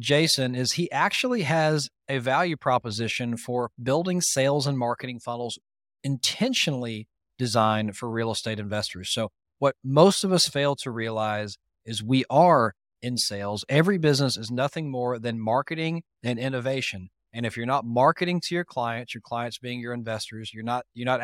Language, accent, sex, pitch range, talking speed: English, American, male, 115-140 Hz, 165 wpm